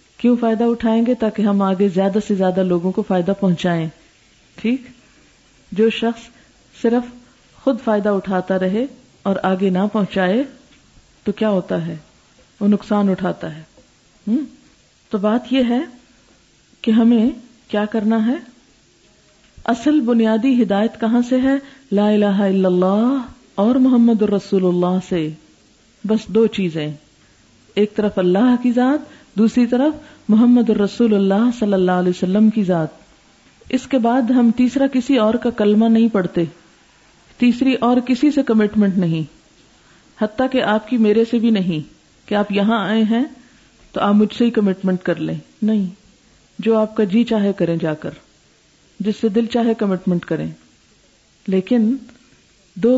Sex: female